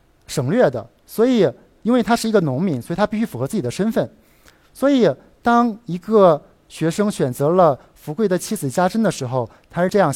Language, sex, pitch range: Chinese, male, 130-185 Hz